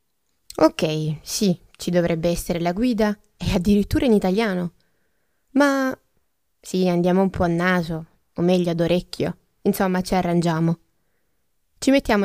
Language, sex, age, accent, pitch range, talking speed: Italian, female, 20-39, native, 180-225 Hz, 130 wpm